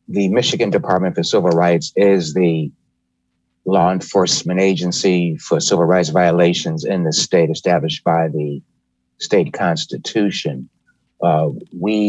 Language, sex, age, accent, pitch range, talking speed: English, male, 60-79, American, 75-90 Hz, 125 wpm